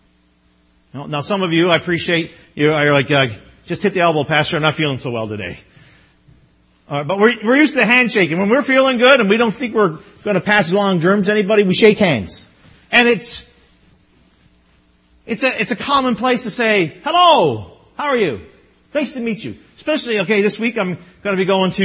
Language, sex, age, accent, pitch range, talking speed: English, male, 40-59, American, 140-230 Hz, 210 wpm